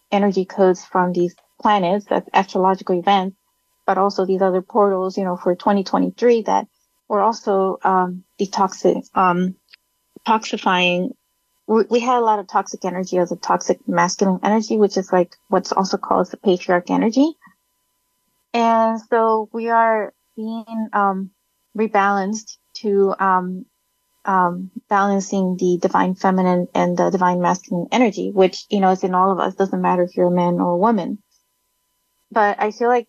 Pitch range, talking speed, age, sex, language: 185-220 Hz, 150 wpm, 30-49, female, English